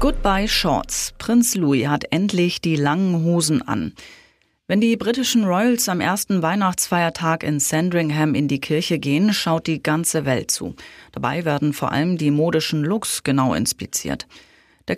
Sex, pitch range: female, 145-190 Hz